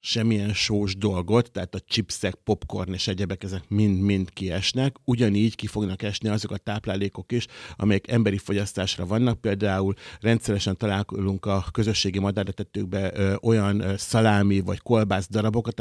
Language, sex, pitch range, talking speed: Hungarian, male, 100-115 Hz, 135 wpm